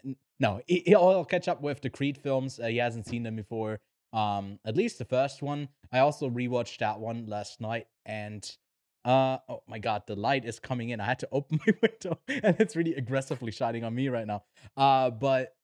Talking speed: 210 wpm